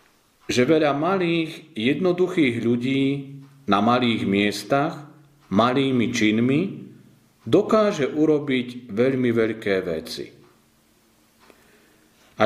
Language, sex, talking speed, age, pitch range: Slovak, male, 75 wpm, 40-59, 115-155 Hz